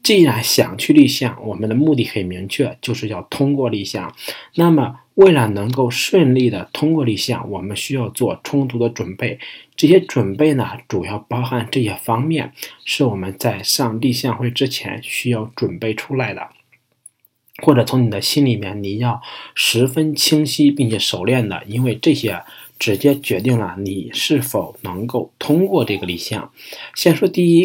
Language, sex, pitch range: Chinese, male, 110-140 Hz